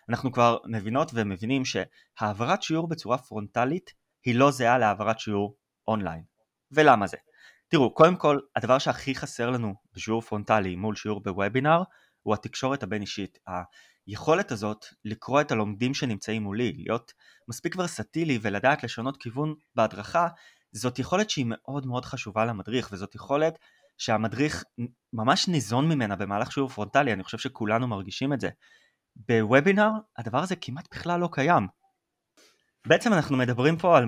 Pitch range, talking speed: 110-150 Hz, 140 wpm